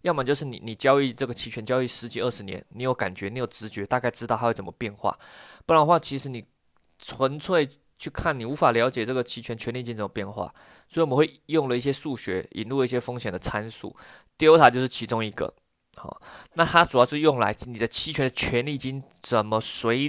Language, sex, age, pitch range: Chinese, male, 20-39, 115-145 Hz